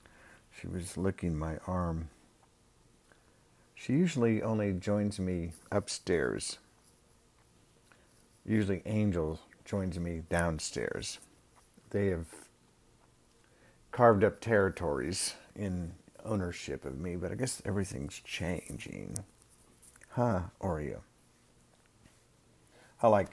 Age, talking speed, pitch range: 50-69, 85 wpm, 85-105 Hz